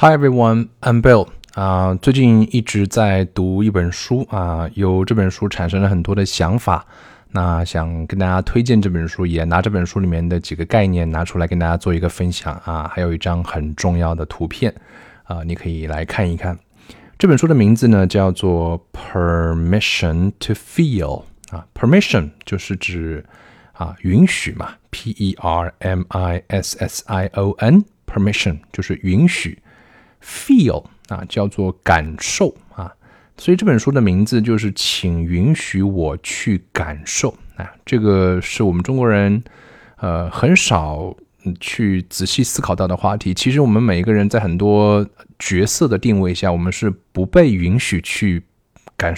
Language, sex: Chinese, male